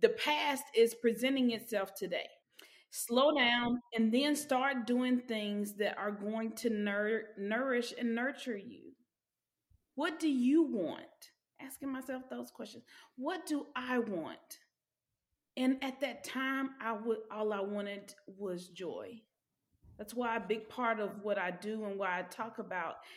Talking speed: 145 wpm